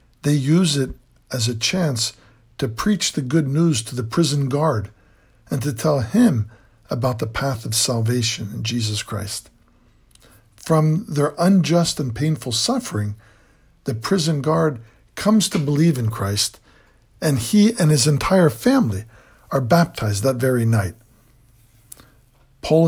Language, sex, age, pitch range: English, male, 60-79, 115-150 Hz